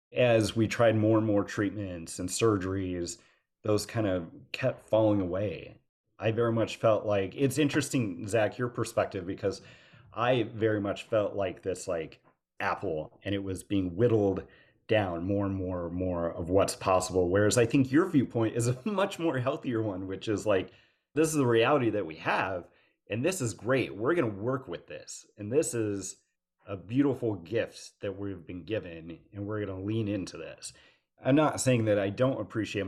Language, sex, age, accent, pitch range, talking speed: English, male, 30-49, American, 95-115 Hz, 190 wpm